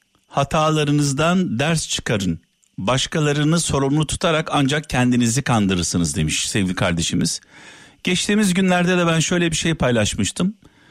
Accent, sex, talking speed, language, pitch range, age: native, male, 110 wpm, Turkish, 105-155 Hz, 50-69